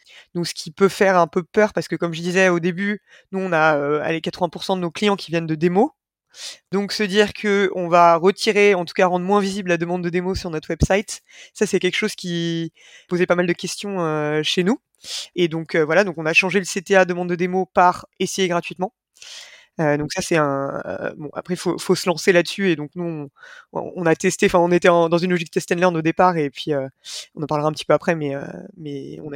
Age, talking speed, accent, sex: 20-39, 250 wpm, French, female